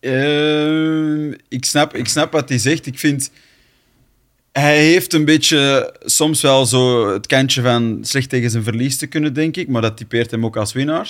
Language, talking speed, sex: Dutch, 190 wpm, male